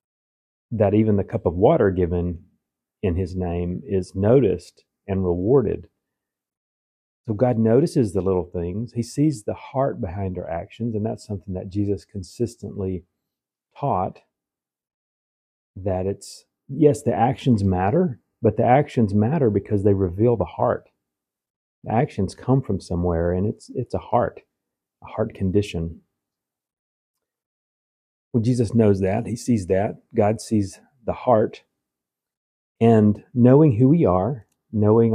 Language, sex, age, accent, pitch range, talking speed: English, male, 40-59, American, 90-115 Hz, 135 wpm